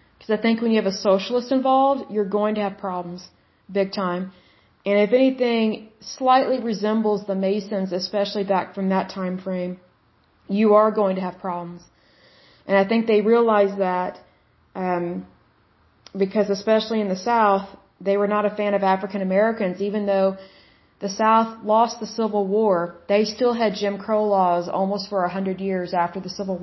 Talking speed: 170 wpm